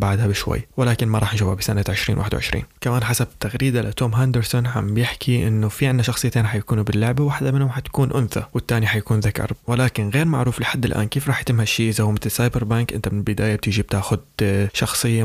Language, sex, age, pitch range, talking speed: Arabic, male, 20-39, 105-125 Hz, 190 wpm